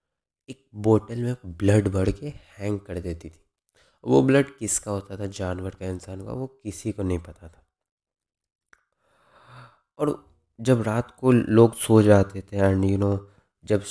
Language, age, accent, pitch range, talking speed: Hindi, 20-39, native, 95-115 Hz, 160 wpm